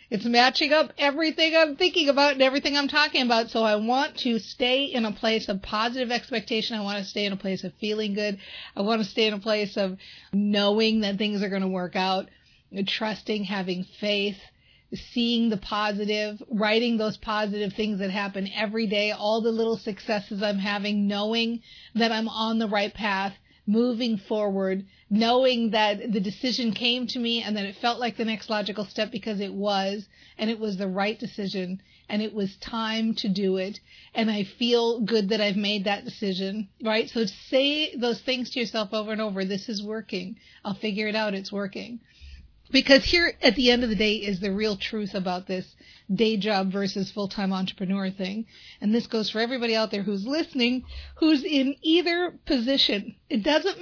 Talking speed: 195 wpm